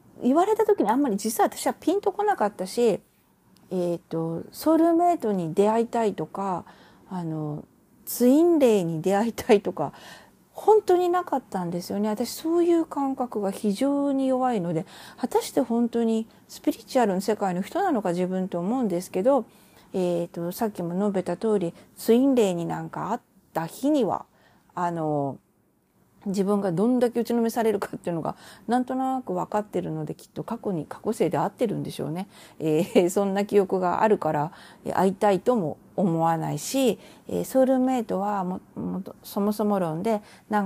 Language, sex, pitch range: Japanese, female, 180-250 Hz